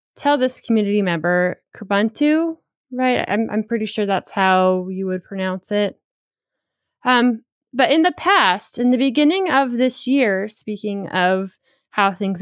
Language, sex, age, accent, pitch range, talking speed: English, female, 20-39, American, 185-245 Hz, 150 wpm